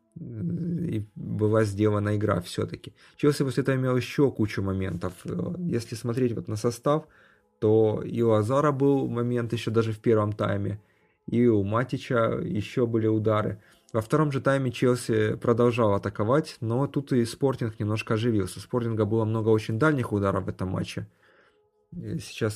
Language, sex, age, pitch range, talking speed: Russian, male, 30-49, 105-125 Hz, 155 wpm